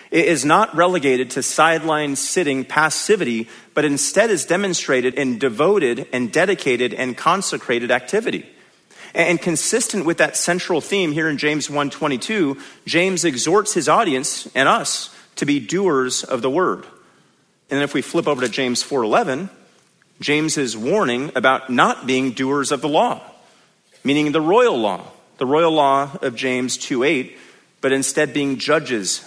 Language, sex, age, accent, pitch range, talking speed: English, male, 40-59, American, 125-155 Hz, 150 wpm